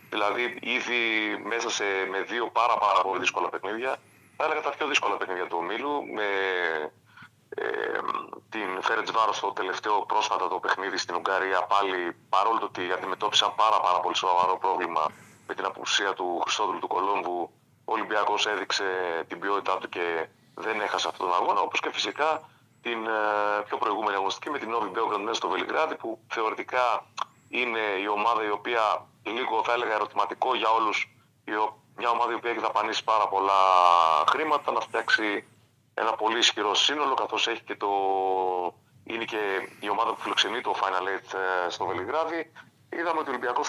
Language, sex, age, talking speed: Greek, male, 30-49, 165 wpm